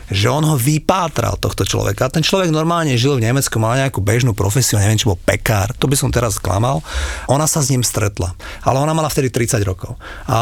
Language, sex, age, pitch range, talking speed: Slovak, male, 40-59, 115-150 Hz, 220 wpm